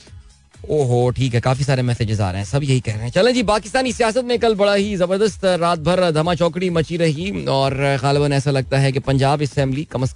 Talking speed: 225 wpm